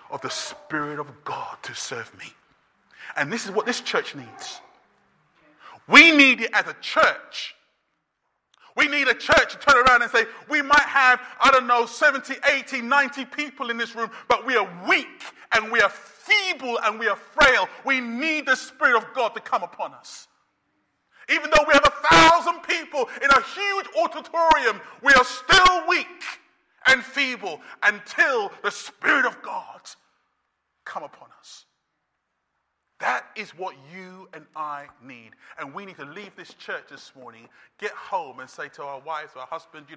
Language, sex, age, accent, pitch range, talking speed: English, male, 30-49, British, 180-295 Hz, 175 wpm